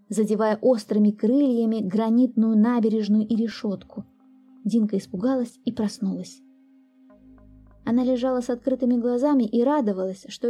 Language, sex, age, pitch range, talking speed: Russian, female, 20-39, 205-260 Hz, 110 wpm